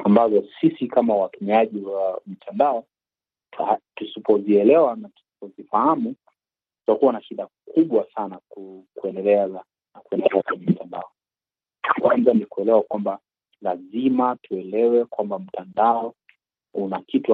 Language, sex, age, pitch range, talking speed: Swahili, male, 40-59, 100-135 Hz, 105 wpm